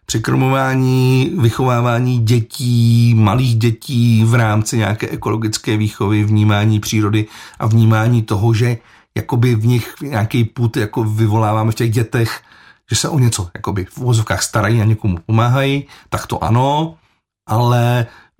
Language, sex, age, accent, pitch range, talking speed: Czech, male, 40-59, native, 110-120 Hz, 135 wpm